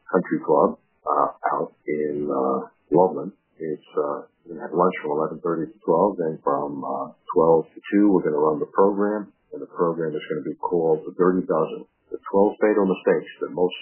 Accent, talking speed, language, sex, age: American, 190 wpm, English, male, 50-69